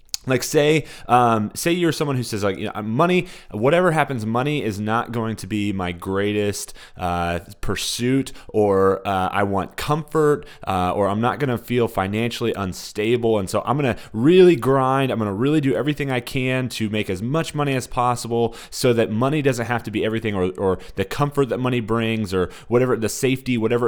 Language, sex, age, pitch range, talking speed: English, male, 30-49, 100-130 Hz, 200 wpm